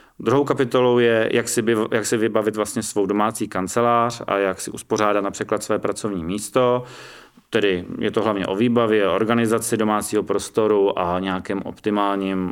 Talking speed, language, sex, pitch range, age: 145 wpm, Czech, male, 100-120 Hz, 30-49